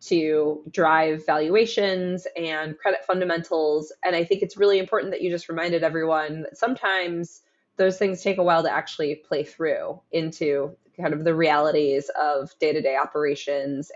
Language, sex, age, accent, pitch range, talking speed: English, female, 20-39, American, 155-185 Hz, 155 wpm